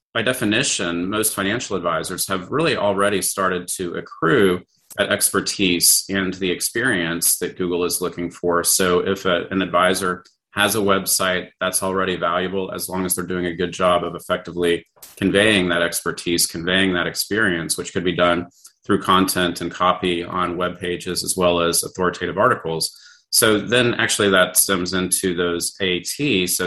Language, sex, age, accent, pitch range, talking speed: English, male, 30-49, American, 90-100 Hz, 160 wpm